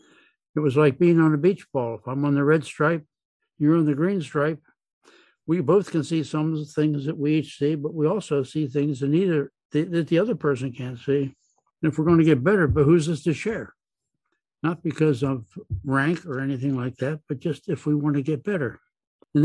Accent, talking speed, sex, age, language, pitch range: American, 225 wpm, male, 60-79, English, 140-170 Hz